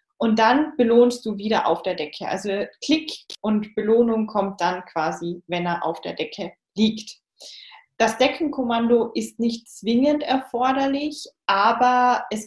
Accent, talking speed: German, 140 wpm